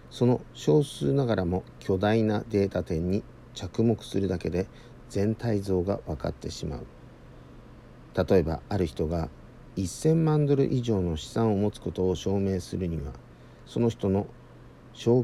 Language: Japanese